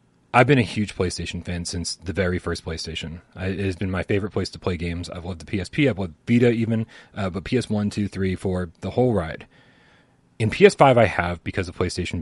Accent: American